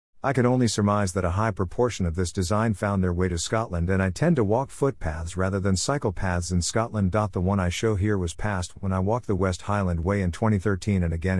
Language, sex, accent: English, male, American